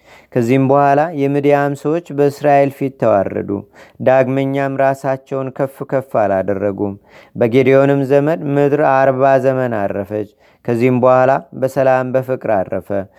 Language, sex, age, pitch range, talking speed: Amharic, male, 30-49, 125-140 Hz, 100 wpm